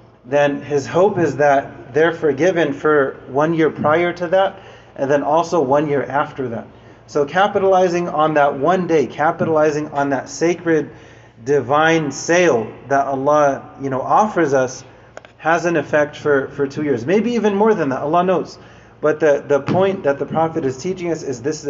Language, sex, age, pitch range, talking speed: English, male, 30-49, 135-160 Hz, 180 wpm